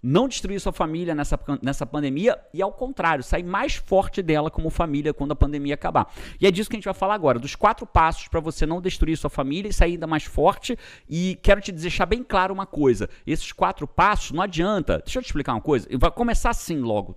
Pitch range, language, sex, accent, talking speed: 160-235 Hz, Portuguese, male, Brazilian, 230 wpm